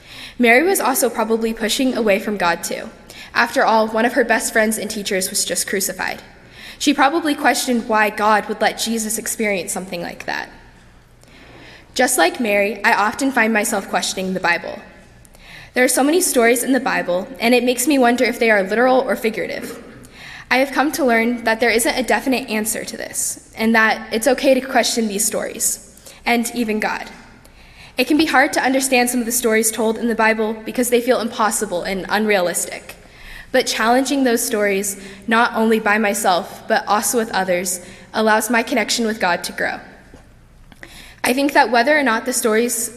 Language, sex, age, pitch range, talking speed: English, female, 10-29, 205-245 Hz, 185 wpm